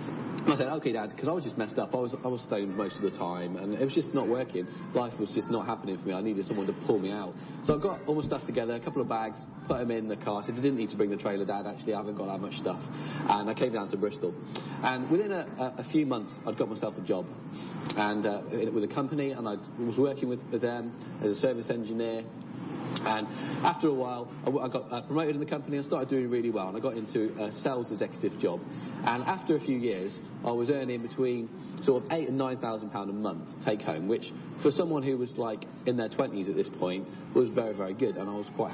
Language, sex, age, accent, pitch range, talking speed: English, male, 40-59, British, 105-130 Hz, 265 wpm